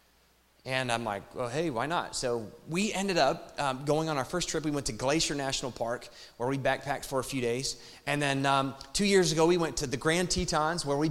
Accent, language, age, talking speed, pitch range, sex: American, English, 30-49, 240 wpm, 130-160 Hz, male